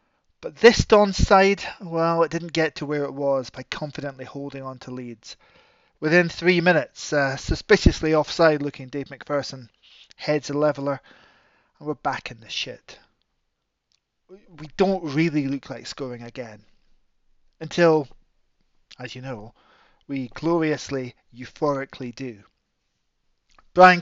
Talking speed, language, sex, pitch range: 125 wpm, English, male, 135-165 Hz